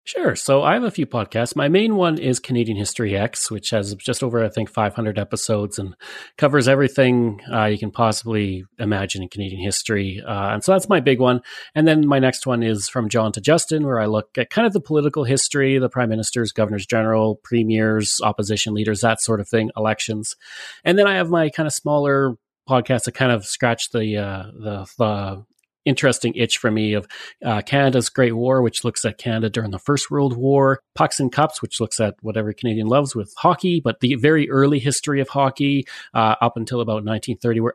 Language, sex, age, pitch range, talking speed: English, male, 30-49, 110-135 Hz, 205 wpm